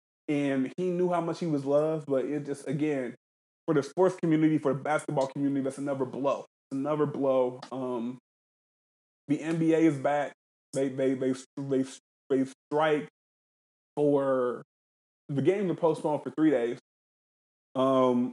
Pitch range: 130-155 Hz